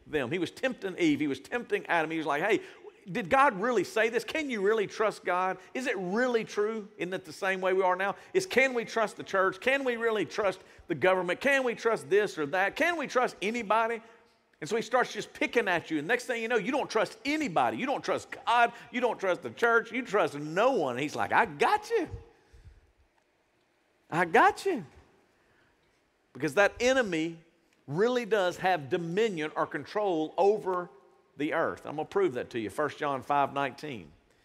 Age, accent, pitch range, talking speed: 50-69, American, 180-245 Hz, 205 wpm